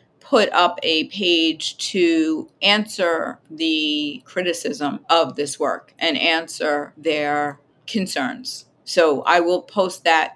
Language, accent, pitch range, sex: English, American, 165-250 Hz, female